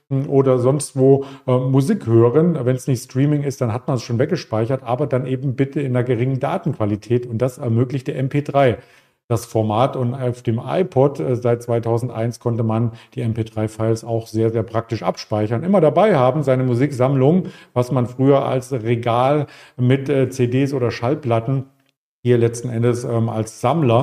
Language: German